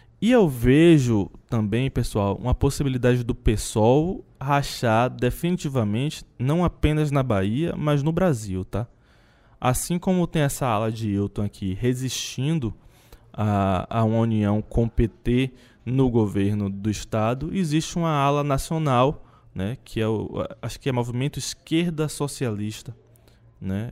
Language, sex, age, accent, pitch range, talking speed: Portuguese, male, 20-39, Brazilian, 115-140 Hz, 135 wpm